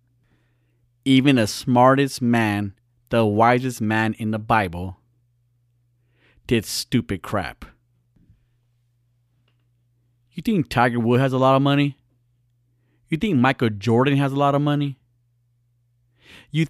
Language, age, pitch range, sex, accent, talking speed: English, 30-49, 120-140 Hz, male, American, 115 wpm